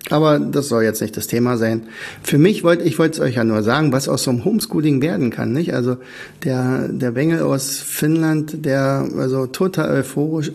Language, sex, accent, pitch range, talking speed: German, male, German, 125-155 Hz, 205 wpm